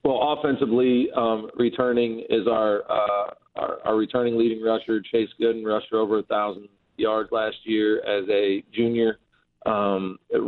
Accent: American